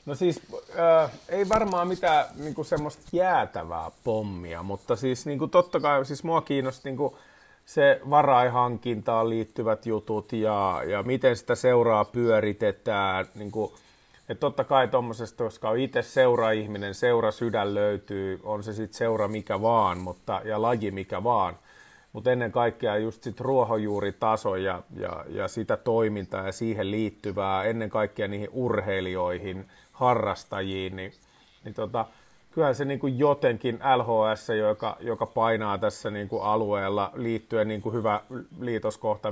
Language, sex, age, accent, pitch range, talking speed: Finnish, male, 30-49, native, 105-125 Hz, 135 wpm